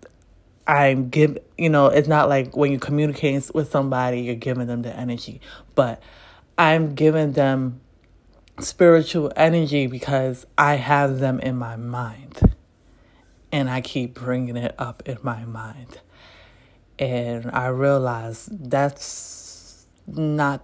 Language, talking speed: English, 130 wpm